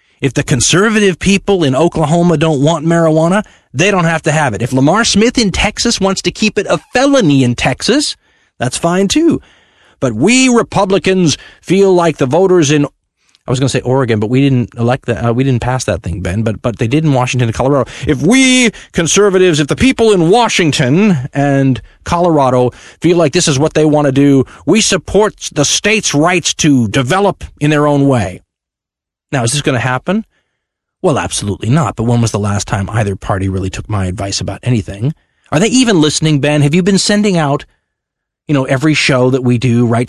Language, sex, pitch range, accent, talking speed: English, male, 105-165 Hz, American, 205 wpm